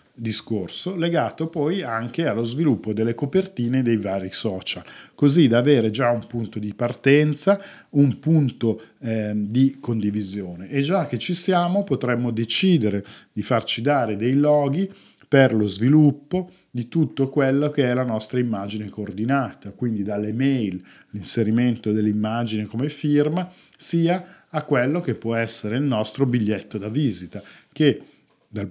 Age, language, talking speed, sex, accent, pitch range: 50-69, Italian, 140 wpm, male, native, 110-145 Hz